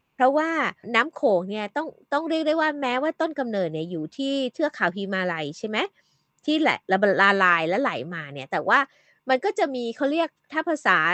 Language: Thai